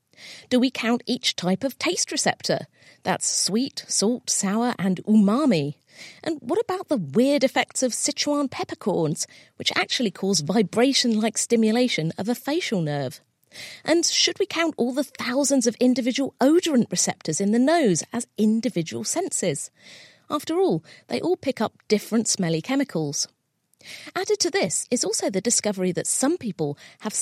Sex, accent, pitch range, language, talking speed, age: female, British, 185-275 Hz, English, 150 wpm, 40-59